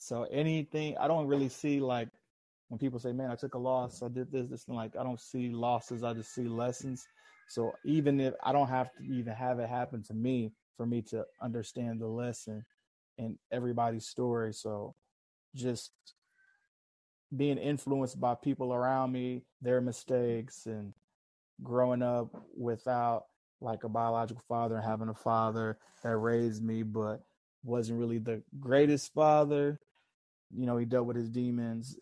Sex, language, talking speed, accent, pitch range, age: male, English, 165 wpm, American, 115-130 Hz, 20-39